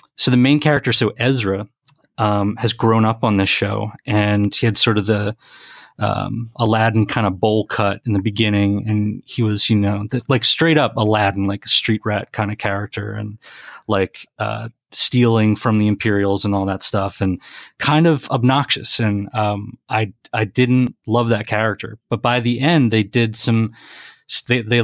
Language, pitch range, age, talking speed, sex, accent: English, 105-130 Hz, 30-49, 185 wpm, male, American